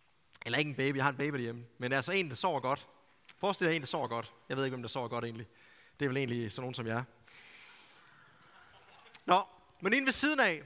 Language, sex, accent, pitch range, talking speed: Danish, male, native, 130-180 Hz, 255 wpm